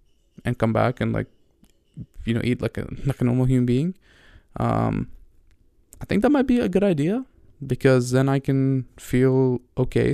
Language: English